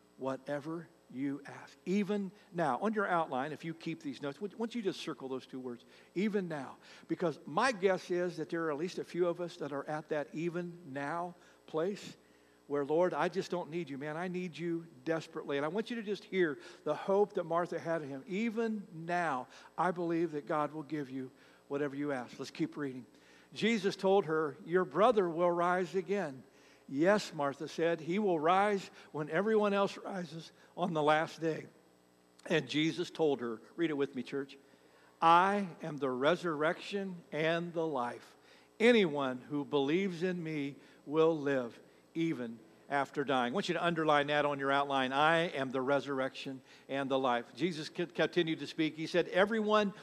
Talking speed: 185 wpm